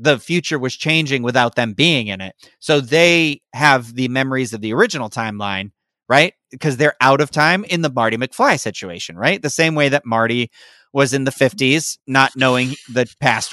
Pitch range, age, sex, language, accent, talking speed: 140-205 Hz, 30-49, male, English, American, 190 wpm